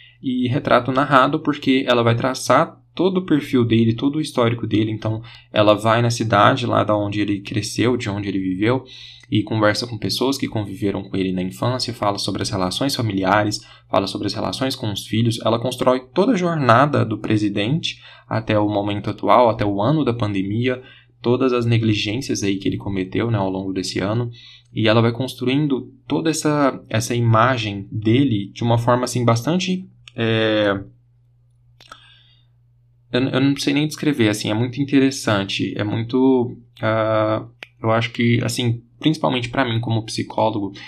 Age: 10-29